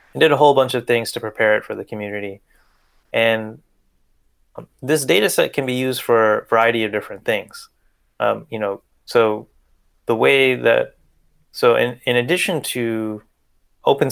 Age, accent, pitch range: 20-39, American, 105-125 Hz